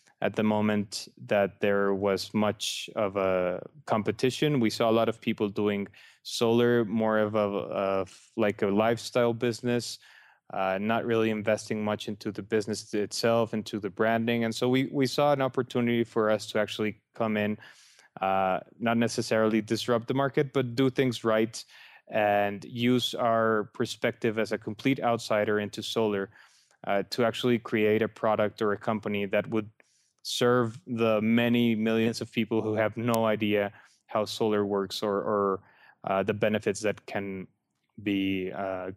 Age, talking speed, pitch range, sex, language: 20-39, 160 wpm, 105-115 Hz, male, English